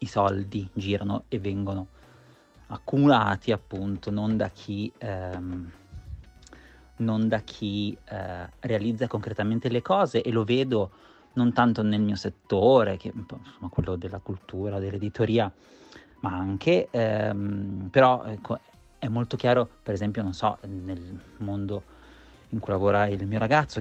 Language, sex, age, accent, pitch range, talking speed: Italian, male, 30-49, native, 95-115 Hz, 125 wpm